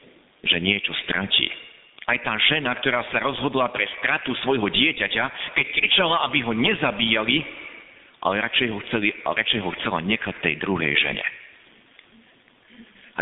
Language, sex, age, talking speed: Slovak, male, 50-69, 135 wpm